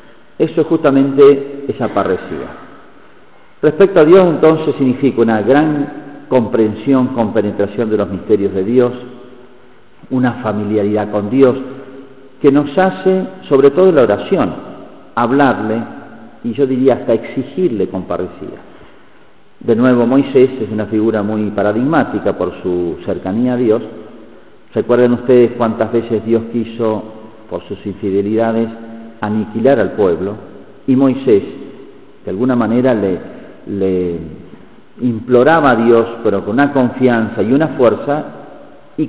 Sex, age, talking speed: male, 50-69, 125 wpm